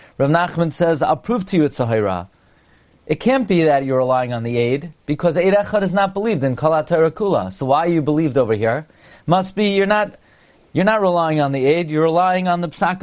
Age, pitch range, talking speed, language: 40-59, 135-180 Hz, 230 wpm, English